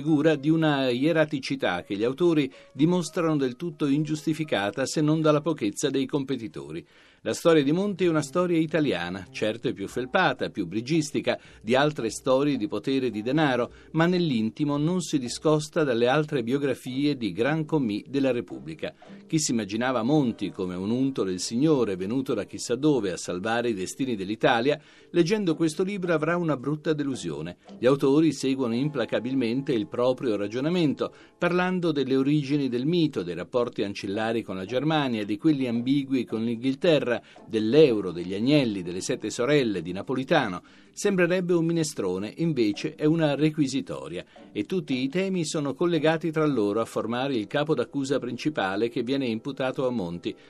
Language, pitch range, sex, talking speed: Italian, 125-160 Hz, male, 160 wpm